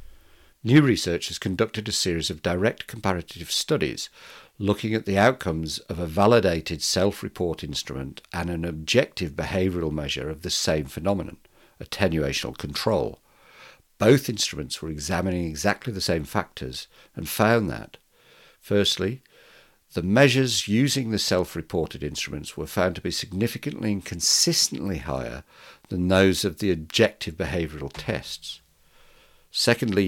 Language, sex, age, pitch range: English, male, 60-79, 80-105 Hz